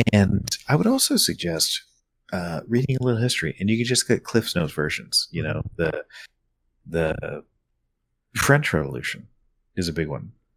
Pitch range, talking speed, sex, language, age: 85-145 Hz, 160 wpm, male, English, 30-49